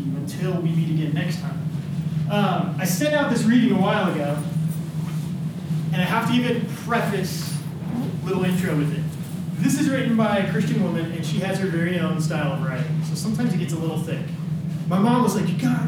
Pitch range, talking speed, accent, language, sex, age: 160-200 Hz, 210 wpm, American, English, male, 20-39